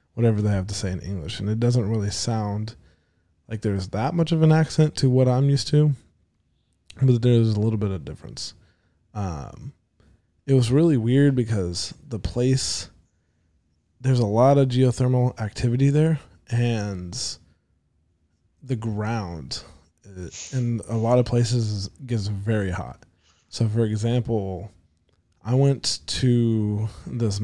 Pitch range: 90-120 Hz